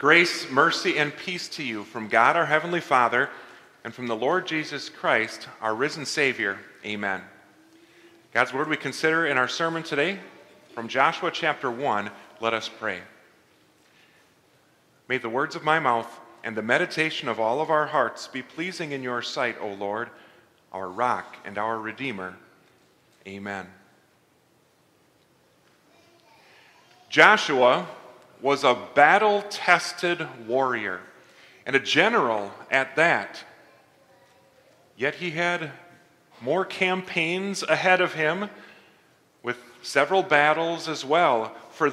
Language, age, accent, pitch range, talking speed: English, 40-59, American, 115-170 Hz, 125 wpm